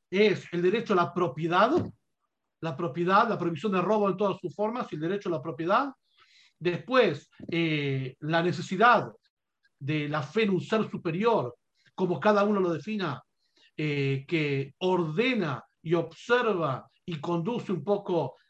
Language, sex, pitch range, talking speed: Spanish, male, 165-210 Hz, 150 wpm